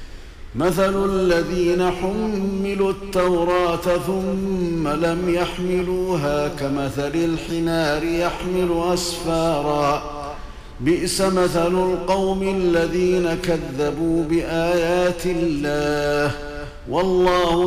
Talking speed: 65 wpm